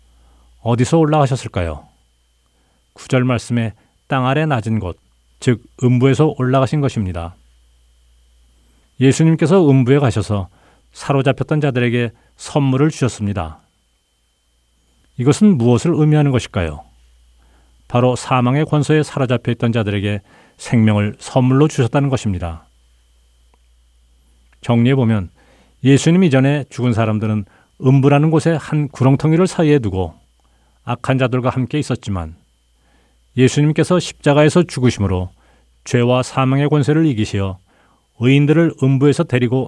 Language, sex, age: Korean, male, 40-59